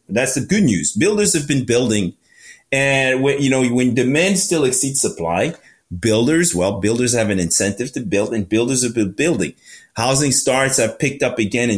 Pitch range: 105-135 Hz